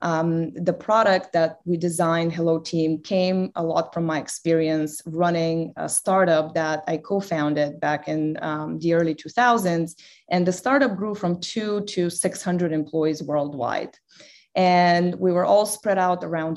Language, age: English, 20-39